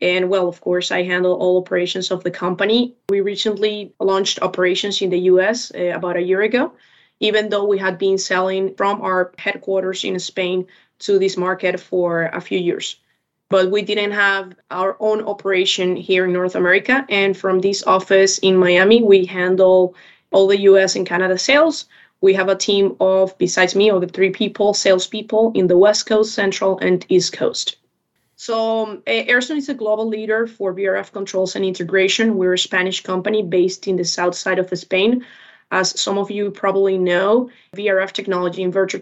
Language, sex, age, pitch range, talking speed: English, female, 20-39, 185-205 Hz, 180 wpm